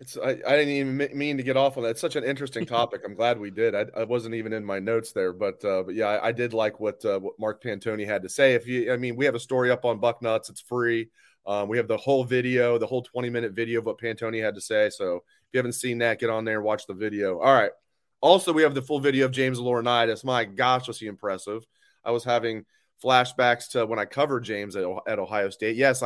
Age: 30-49